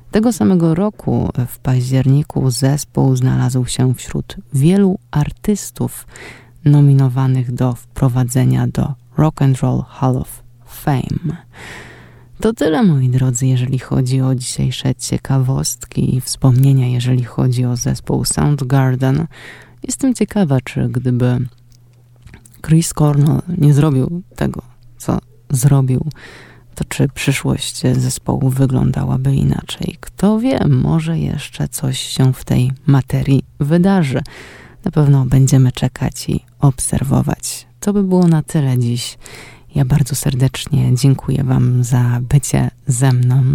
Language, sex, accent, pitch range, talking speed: Polish, female, native, 125-150 Hz, 115 wpm